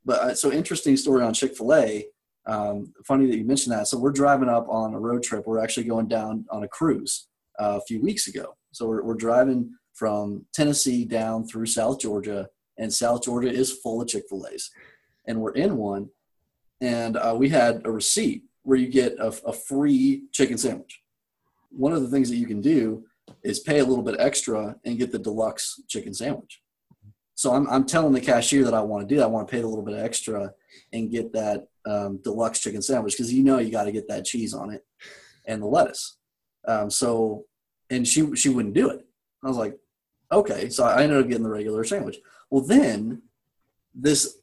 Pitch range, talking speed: 110-135 Hz, 205 wpm